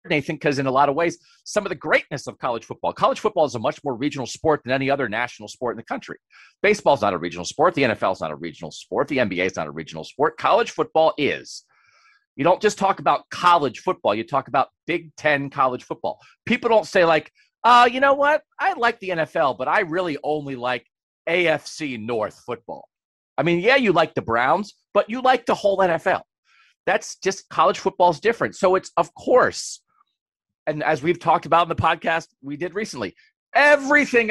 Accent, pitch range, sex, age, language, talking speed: American, 125-195 Hz, male, 40-59, English, 210 wpm